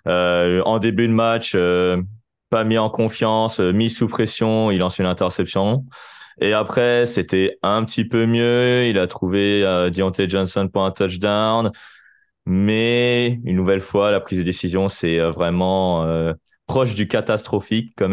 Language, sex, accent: French, male, French